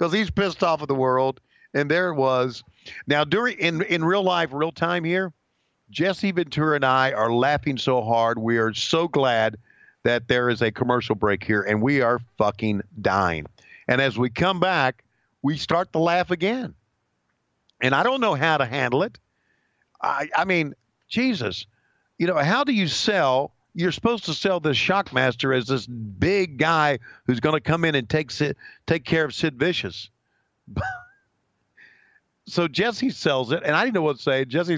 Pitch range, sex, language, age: 120-170 Hz, male, English, 50-69